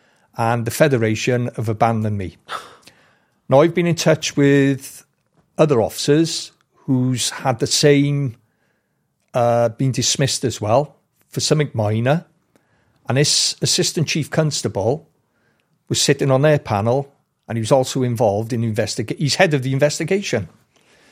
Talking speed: 135 wpm